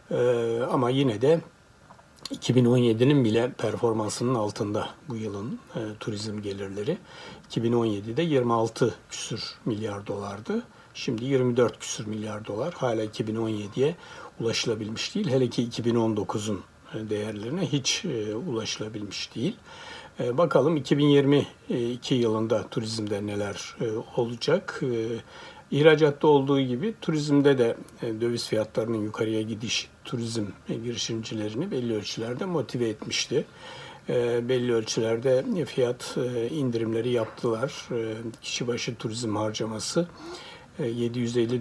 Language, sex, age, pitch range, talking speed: Turkish, male, 60-79, 110-130 Hz, 100 wpm